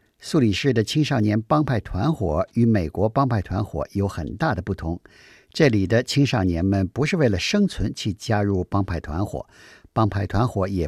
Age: 50-69